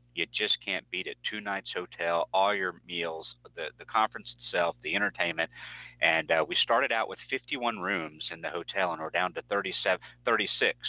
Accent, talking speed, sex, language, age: American, 180 wpm, male, English, 40-59